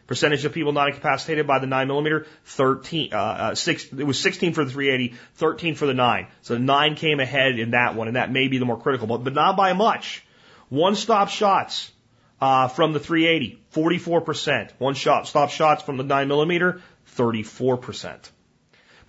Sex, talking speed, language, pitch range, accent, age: male, 180 wpm, English, 115-150 Hz, American, 30-49